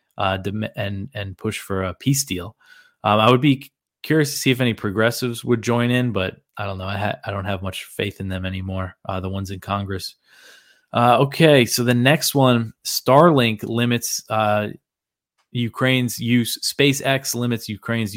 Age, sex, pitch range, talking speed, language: 20-39, male, 105-130 Hz, 180 wpm, English